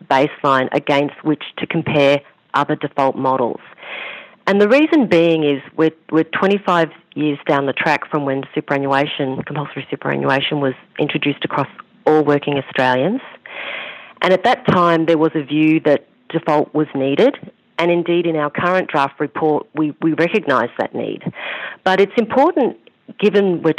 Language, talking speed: English, 150 wpm